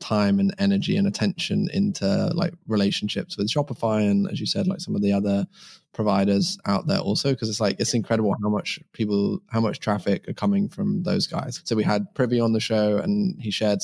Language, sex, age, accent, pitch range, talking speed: English, male, 20-39, British, 105-140 Hz, 215 wpm